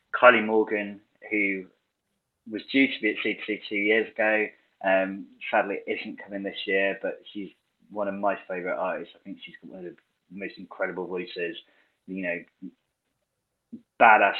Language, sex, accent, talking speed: English, male, British, 160 wpm